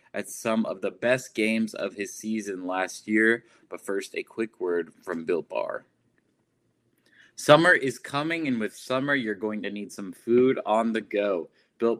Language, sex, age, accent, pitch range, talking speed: English, male, 20-39, American, 110-145 Hz, 175 wpm